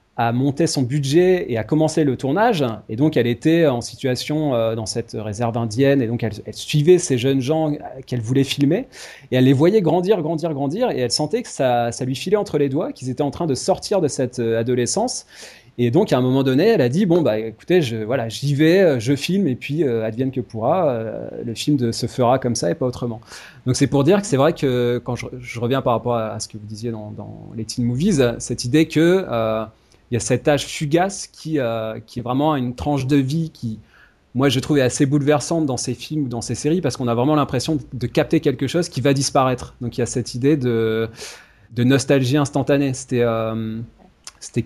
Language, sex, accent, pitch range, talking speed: French, male, French, 120-150 Hz, 235 wpm